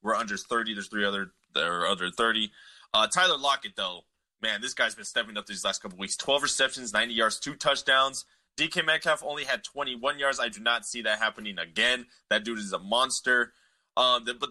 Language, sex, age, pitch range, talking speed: English, male, 20-39, 115-155 Hz, 210 wpm